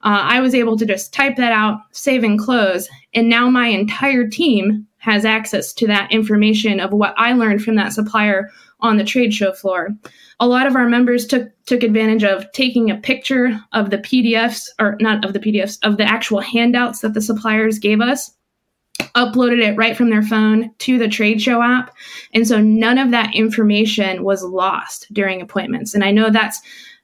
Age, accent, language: 20-39, American, English